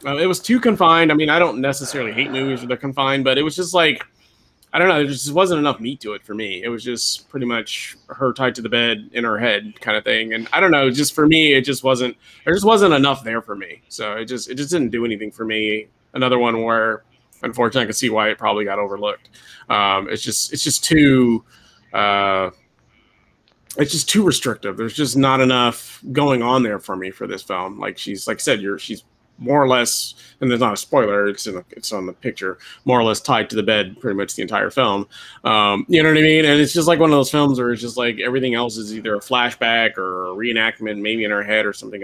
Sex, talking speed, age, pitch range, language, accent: male, 255 wpm, 30-49, 110-140 Hz, English, American